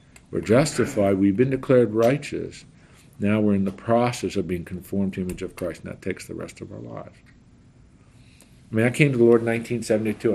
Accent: American